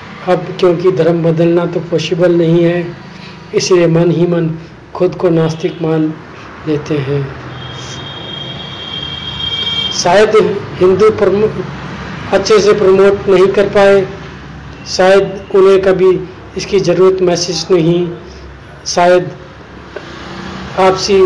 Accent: native